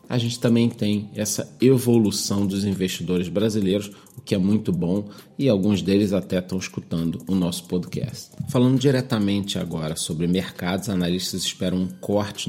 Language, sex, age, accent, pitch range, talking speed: Portuguese, male, 40-59, Brazilian, 95-120 Hz, 155 wpm